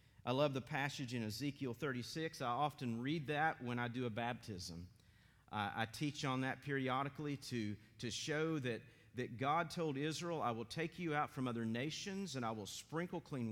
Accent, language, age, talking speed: American, English, 40-59, 190 wpm